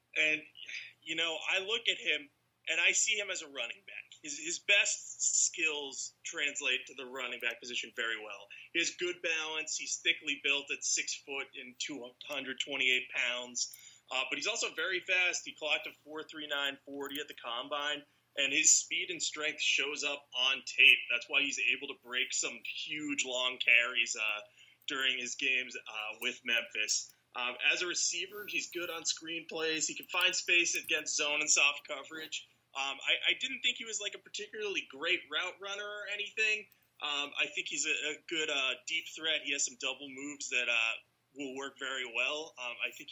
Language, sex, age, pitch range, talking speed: English, male, 20-39, 135-180 Hz, 190 wpm